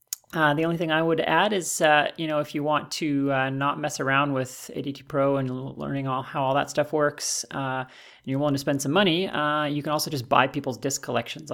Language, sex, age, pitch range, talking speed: English, male, 30-49, 130-155 Hz, 245 wpm